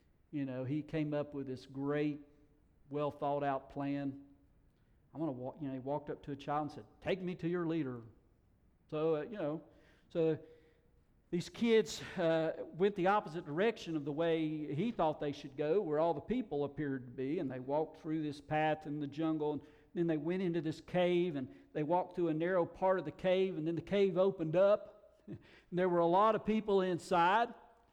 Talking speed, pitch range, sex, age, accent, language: 210 wpm, 140-185 Hz, male, 50-69, American, English